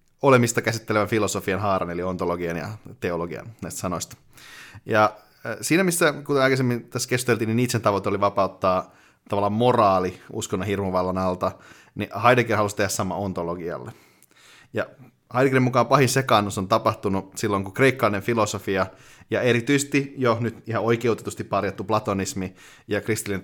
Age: 30-49